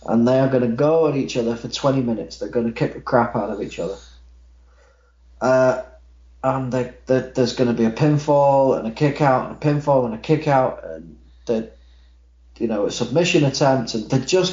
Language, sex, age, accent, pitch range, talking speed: English, male, 30-49, British, 95-135 Hz, 195 wpm